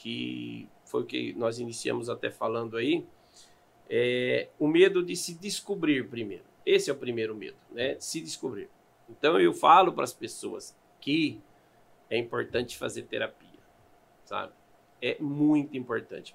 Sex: male